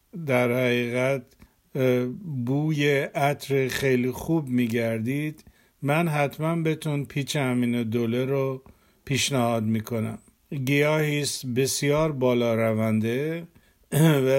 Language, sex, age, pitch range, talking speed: Persian, male, 50-69, 120-140 Hz, 90 wpm